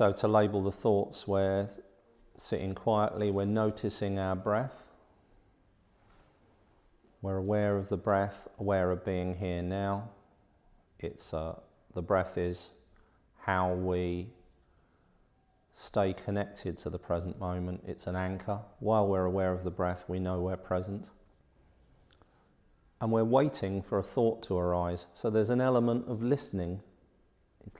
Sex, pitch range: male, 90-105 Hz